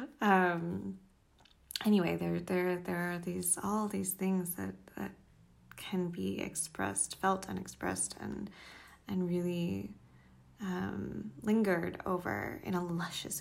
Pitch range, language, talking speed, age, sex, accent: 170-190 Hz, English, 115 wpm, 20-39, female, American